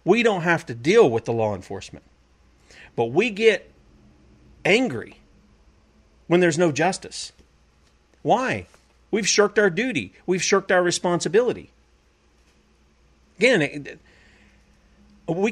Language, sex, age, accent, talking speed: English, male, 40-59, American, 110 wpm